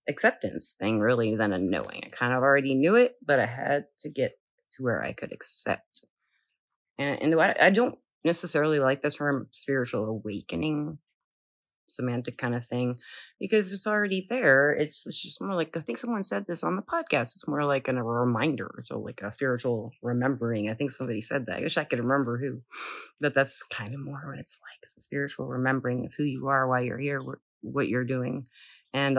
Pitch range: 125-155 Hz